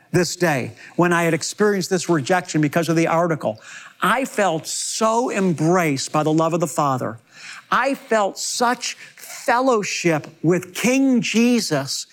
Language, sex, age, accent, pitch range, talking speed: English, male, 50-69, American, 165-225 Hz, 145 wpm